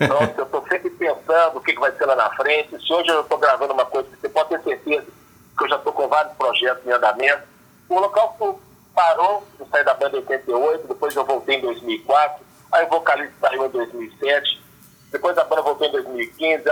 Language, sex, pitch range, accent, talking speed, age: Spanish, male, 150-210 Hz, Brazilian, 210 wpm, 50-69